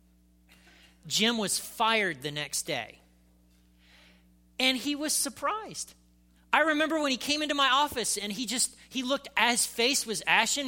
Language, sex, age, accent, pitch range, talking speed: English, male, 40-59, American, 190-240 Hz, 150 wpm